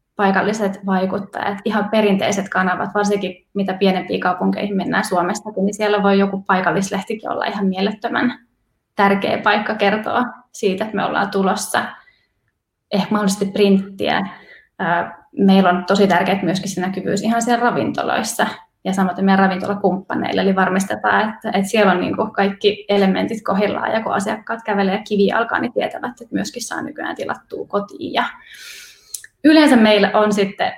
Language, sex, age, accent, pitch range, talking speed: Finnish, female, 20-39, native, 195-215 Hz, 135 wpm